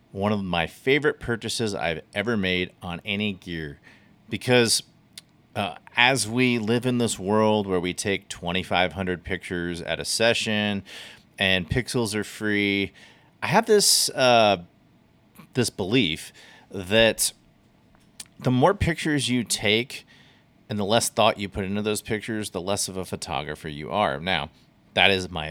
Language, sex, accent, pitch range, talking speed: English, male, American, 90-115 Hz, 150 wpm